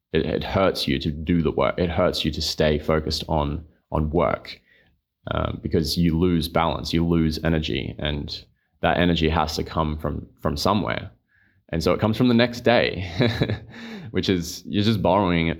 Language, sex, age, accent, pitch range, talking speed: English, male, 20-39, Australian, 75-95 Hz, 185 wpm